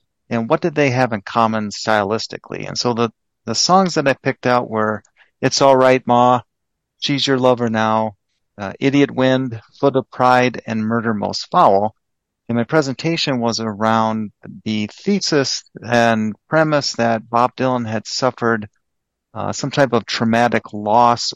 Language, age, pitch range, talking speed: English, 50-69, 105-130 Hz, 155 wpm